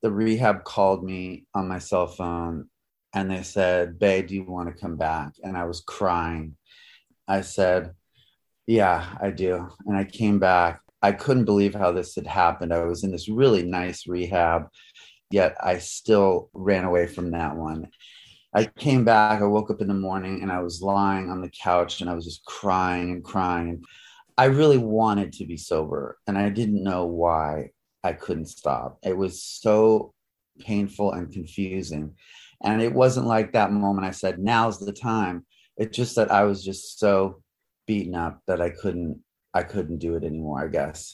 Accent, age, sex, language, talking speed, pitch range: American, 30-49, male, English, 185 wpm, 85-110 Hz